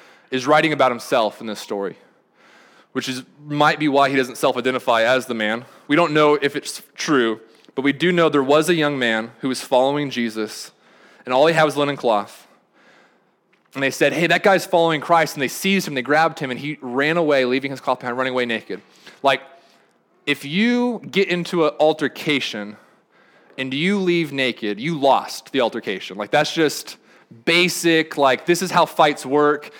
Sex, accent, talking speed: male, American, 190 wpm